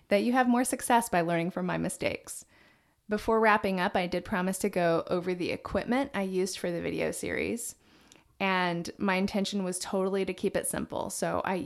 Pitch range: 175-215 Hz